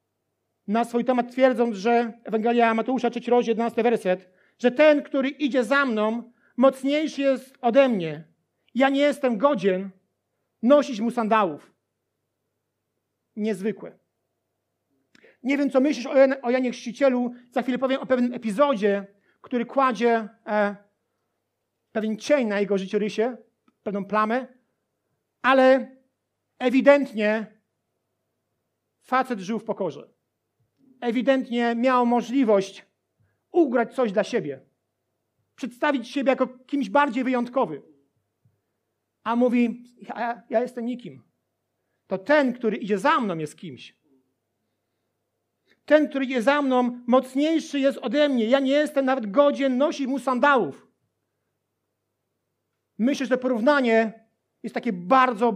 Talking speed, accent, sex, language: 120 wpm, native, male, Polish